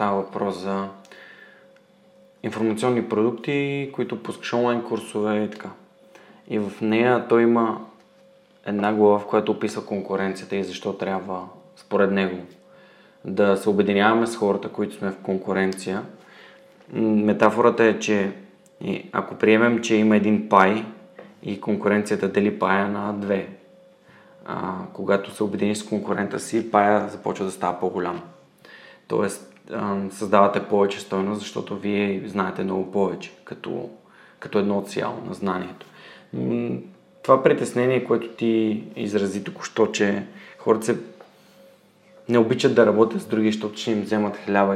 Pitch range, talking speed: 100-115 Hz, 130 wpm